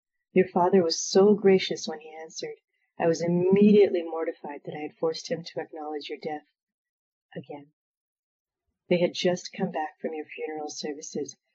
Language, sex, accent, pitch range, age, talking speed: English, female, American, 160-195 Hz, 40-59, 160 wpm